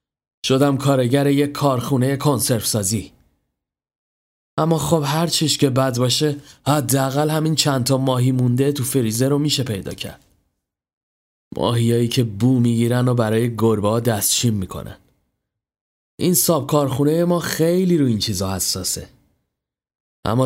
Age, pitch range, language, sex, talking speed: 30-49, 110-140 Hz, Persian, male, 130 wpm